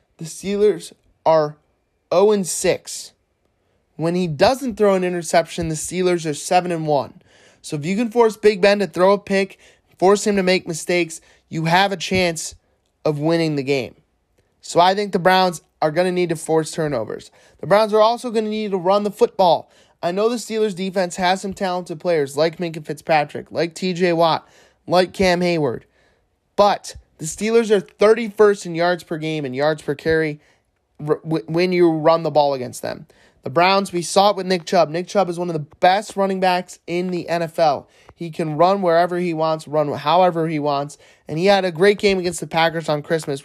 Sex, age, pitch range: male, 20-39, 155-190 Hz